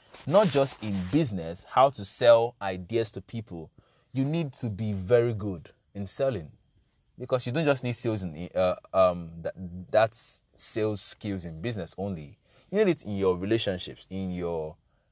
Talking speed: 170 wpm